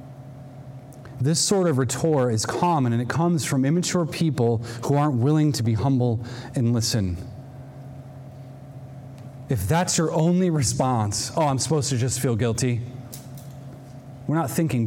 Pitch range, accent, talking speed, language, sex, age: 125-160 Hz, American, 140 wpm, English, male, 30-49